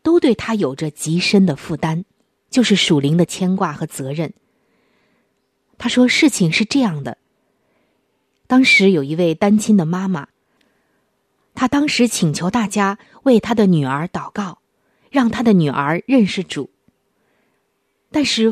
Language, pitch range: Chinese, 175-245 Hz